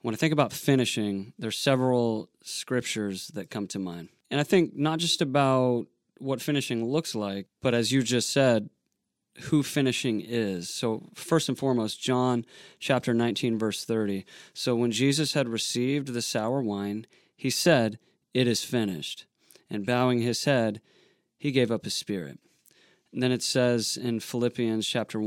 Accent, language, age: American, English, 30-49